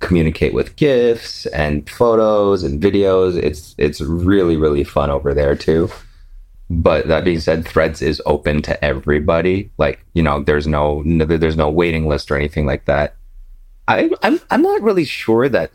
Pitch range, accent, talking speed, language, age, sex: 80-110 Hz, American, 170 wpm, English, 30-49, male